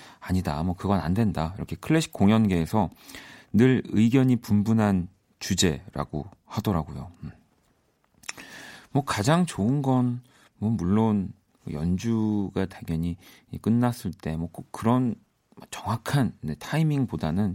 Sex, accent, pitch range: male, native, 90-125 Hz